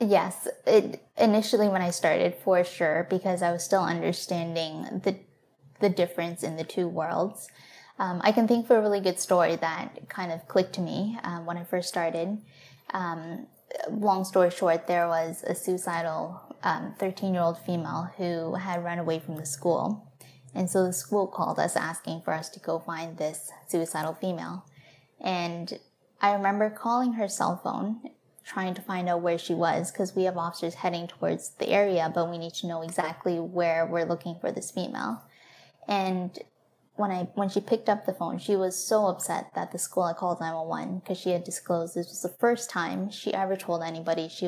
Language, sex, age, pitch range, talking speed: English, female, 10-29, 170-195 Hz, 190 wpm